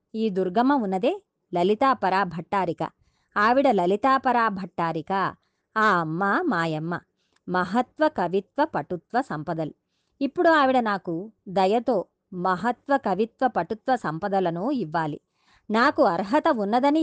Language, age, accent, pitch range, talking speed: Telugu, 20-39, native, 190-265 Hz, 95 wpm